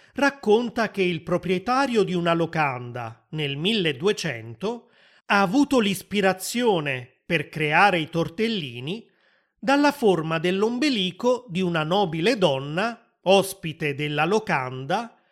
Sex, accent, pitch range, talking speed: male, native, 160-220 Hz, 100 wpm